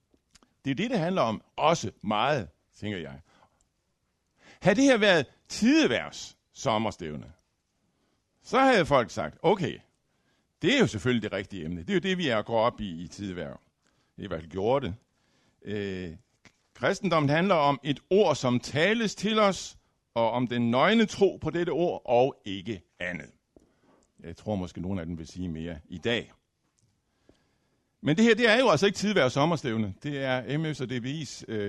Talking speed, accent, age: 165 wpm, native, 60-79